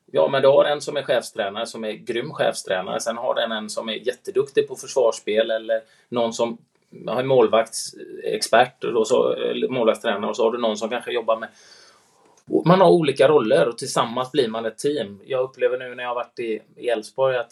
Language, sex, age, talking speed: Swedish, male, 20-39, 200 wpm